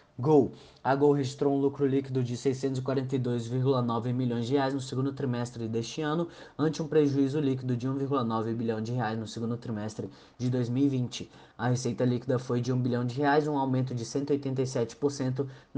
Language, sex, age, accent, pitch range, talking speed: Portuguese, male, 20-39, Brazilian, 115-135 Hz, 165 wpm